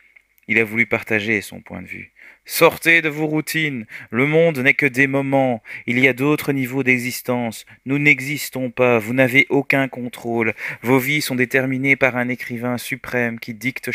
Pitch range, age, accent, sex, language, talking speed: 110-135 Hz, 30-49, French, male, French, 175 wpm